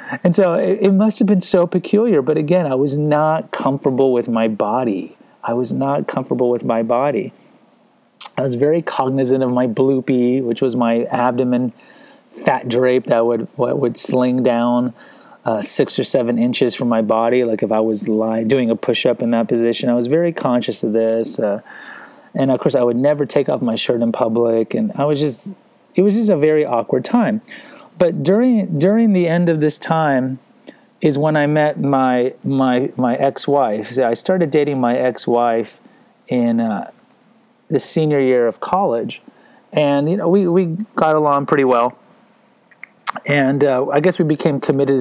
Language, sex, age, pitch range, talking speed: English, male, 30-49, 120-170 Hz, 185 wpm